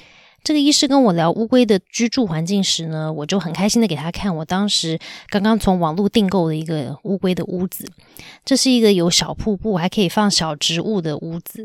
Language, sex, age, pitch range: Chinese, female, 20-39, 165-225 Hz